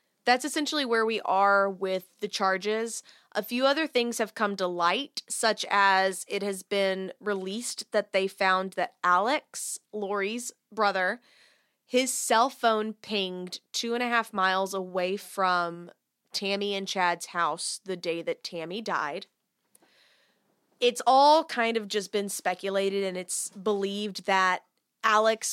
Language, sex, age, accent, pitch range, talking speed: English, female, 20-39, American, 190-235 Hz, 145 wpm